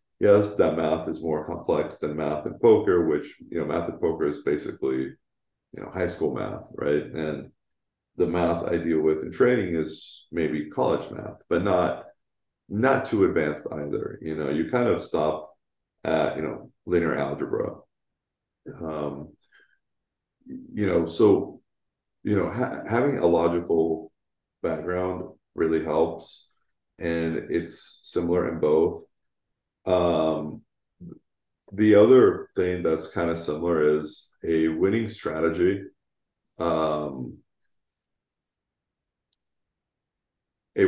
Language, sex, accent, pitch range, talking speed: English, male, American, 80-90 Hz, 125 wpm